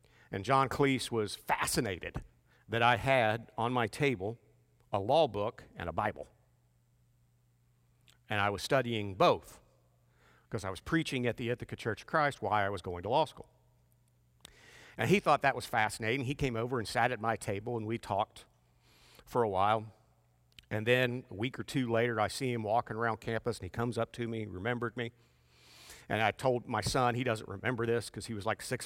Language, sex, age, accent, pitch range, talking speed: English, male, 50-69, American, 100-120 Hz, 200 wpm